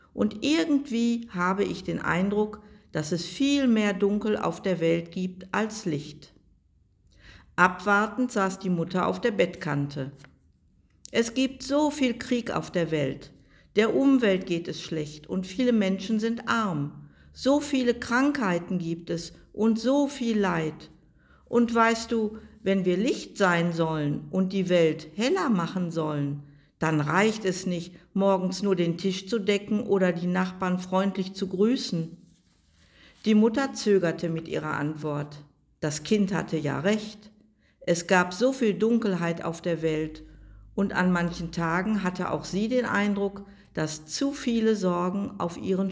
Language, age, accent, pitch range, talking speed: German, 60-79, German, 165-220 Hz, 150 wpm